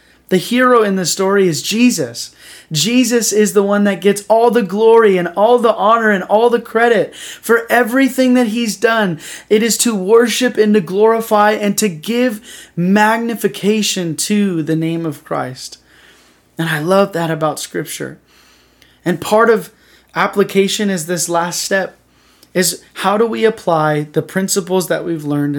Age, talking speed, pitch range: 20-39, 160 wpm, 155-210 Hz